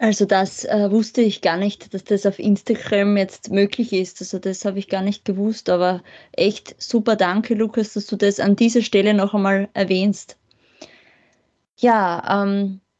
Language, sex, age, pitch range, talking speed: German, female, 20-39, 200-225 Hz, 170 wpm